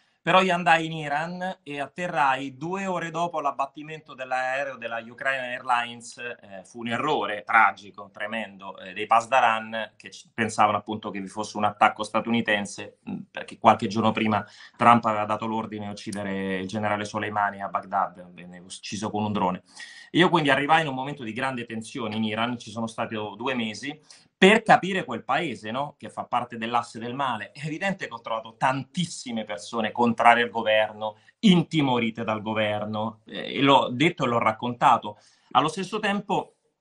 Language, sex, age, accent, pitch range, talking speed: Italian, male, 30-49, native, 110-145 Hz, 170 wpm